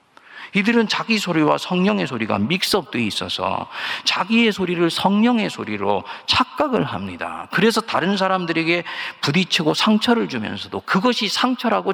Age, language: 40-59, Korean